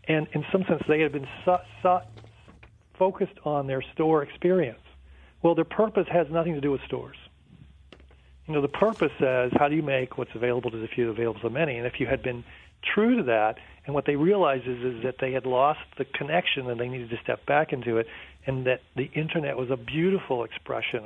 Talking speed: 220 wpm